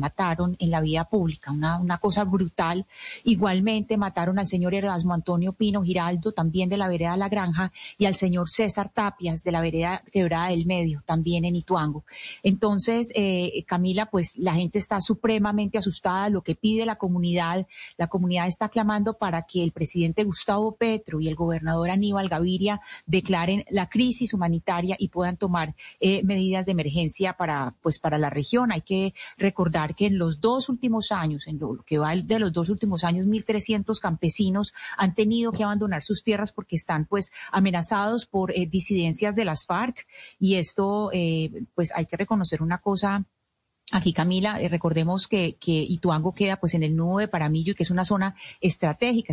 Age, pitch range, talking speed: 30-49, 170-205 Hz, 180 wpm